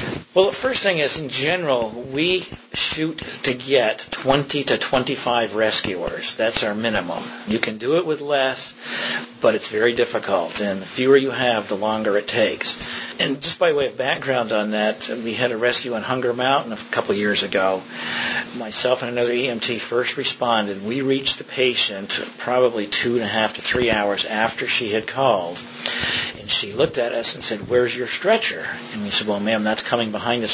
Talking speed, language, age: 190 wpm, English, 50-69